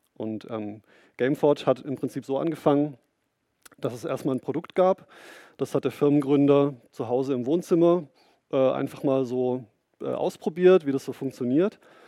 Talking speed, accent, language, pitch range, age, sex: 160 wpm, German, German, 120-150 Hz, 30-49, male